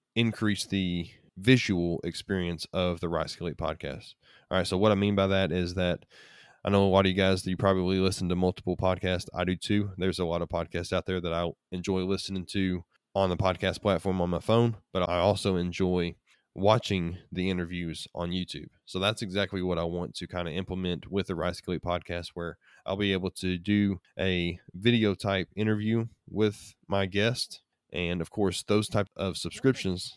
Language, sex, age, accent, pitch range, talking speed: English, male, 20-39, American, 90-100 Hz, 195 wpm